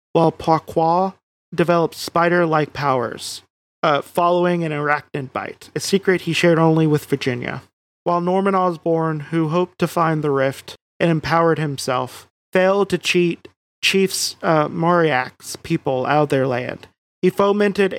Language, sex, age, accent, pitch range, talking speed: English, male, 30-49, American, 150-175 Hz, 145 wpm